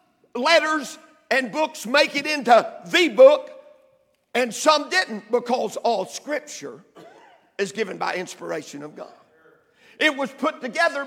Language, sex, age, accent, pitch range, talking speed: English, male, 50-69, American, 270-345 Hz, 130 wpm